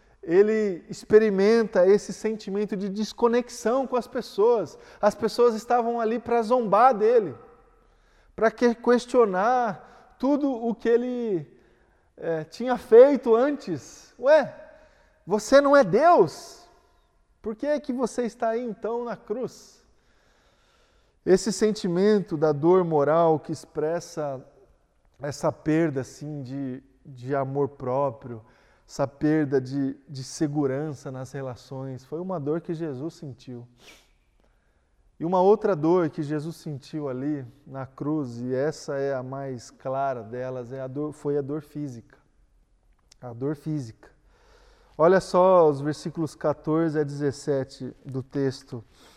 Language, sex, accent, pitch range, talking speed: Portuguese, male, Brazilian, 135-220 Hz, 125 wpm